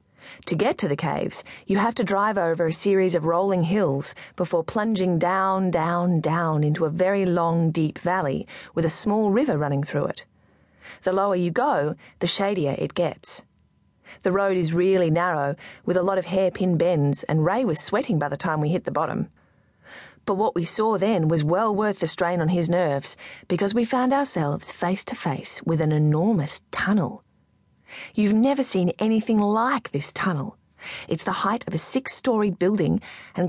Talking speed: 185 wpm